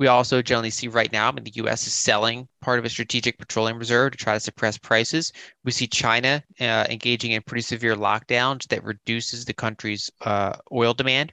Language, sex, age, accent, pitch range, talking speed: English, male, 20-39, American, 110-130 Hz, 205 wpm